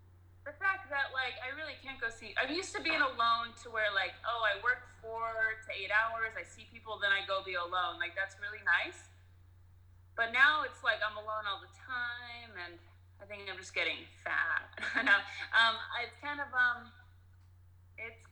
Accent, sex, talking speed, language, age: American, female, 190 wpm, English, 30-49